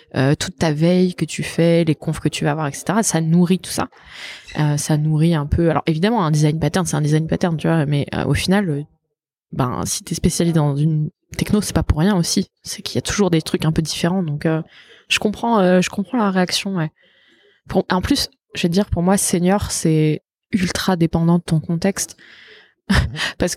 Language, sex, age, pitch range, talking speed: French, female, 20-39, 150-185 Hz, 225 wpm